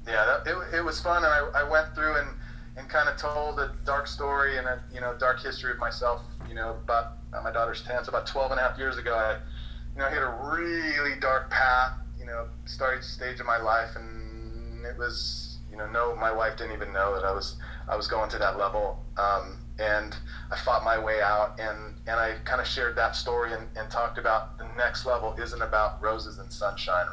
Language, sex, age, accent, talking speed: English, male, 30-49, American, 230 wpm